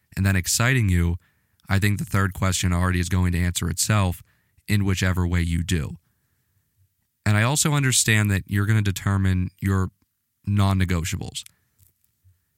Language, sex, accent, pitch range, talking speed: English, male, American, 95-110 Hz, 150 wpm